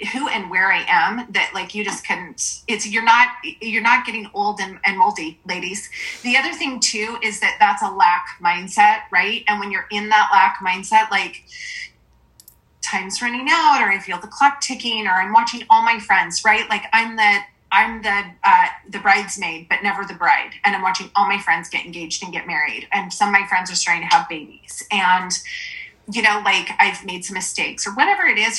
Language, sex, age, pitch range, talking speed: English, female, 30-49, 190-260 Hz, 210 wpm